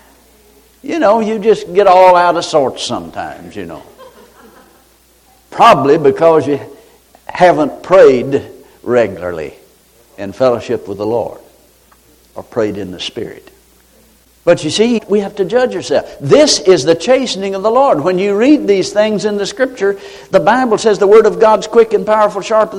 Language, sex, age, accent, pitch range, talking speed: English, male, 60-79, American, 170-220 Hz, 165 wpm